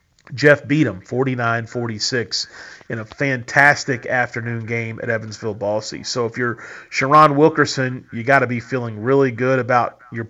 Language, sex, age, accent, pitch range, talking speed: English, male, 40-59, American, 115-140 Hz, 150 wpm